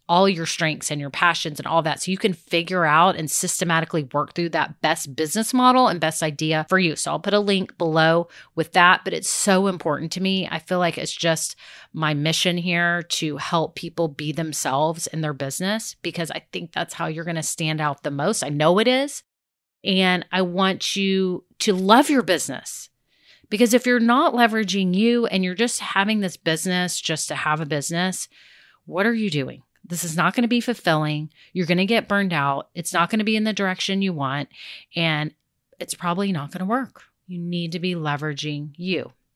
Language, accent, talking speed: English, American, 205 wpm